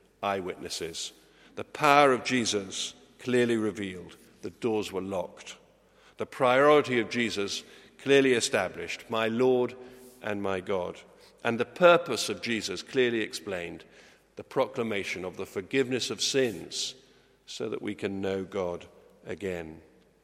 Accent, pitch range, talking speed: British, 105-145 Hz, 125 wpm